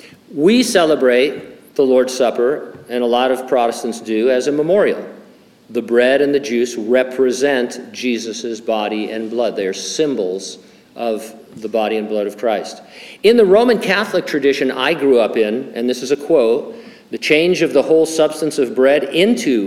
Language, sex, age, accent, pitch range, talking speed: English, male, 50-69, American, 115-150 Hz, 175 wpm